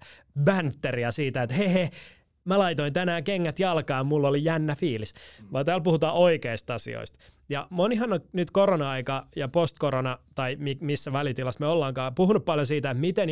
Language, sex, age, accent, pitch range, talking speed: Finnish, male, 20-39, native, 130-175 Hz, 160 wpm